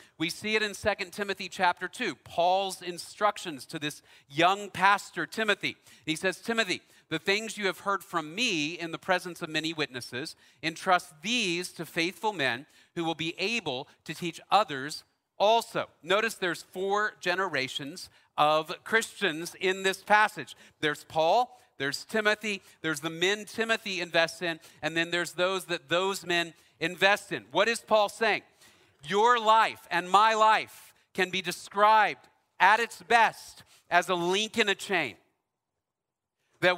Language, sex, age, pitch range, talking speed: English, male, 40-59, 165-205 Hz, 155 wpm